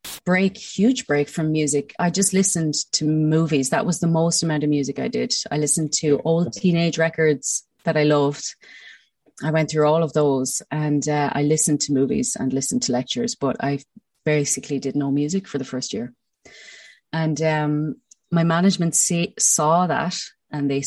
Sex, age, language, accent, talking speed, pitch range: female, 30-49, English, Irish, 180 wpm, 145-180 Hz